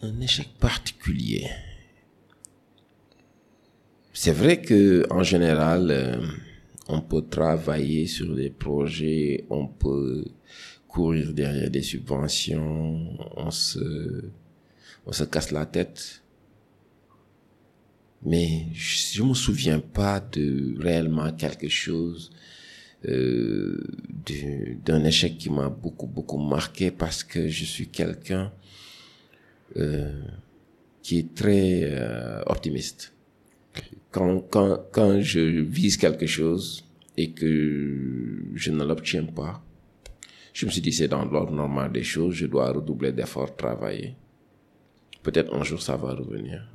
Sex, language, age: male, French, 50-69